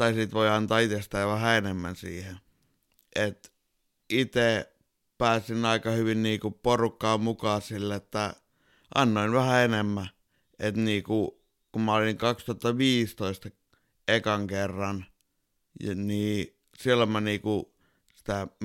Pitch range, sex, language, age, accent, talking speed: 100-115 Hz, male, Finnish, 60-79, native, 110 wpm